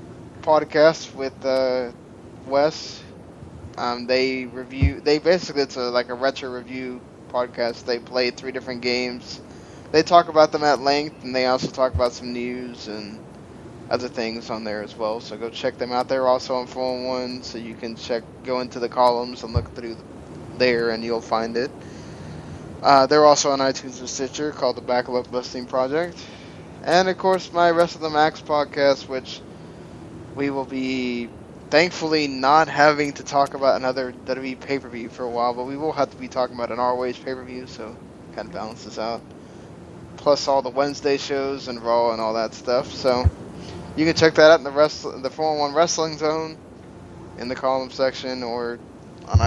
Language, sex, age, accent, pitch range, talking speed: English, male, 10-29, American, 120-145 Hz, 180 wpm